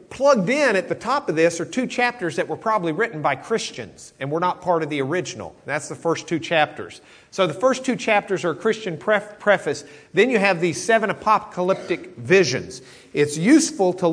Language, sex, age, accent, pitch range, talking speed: English, male, 50-69, American, 155-205 Hz, 200 wpm